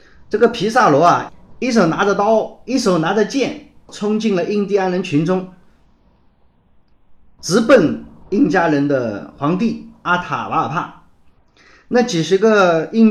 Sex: male